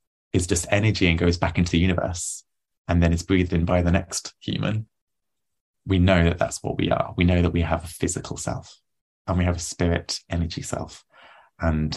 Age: 20-39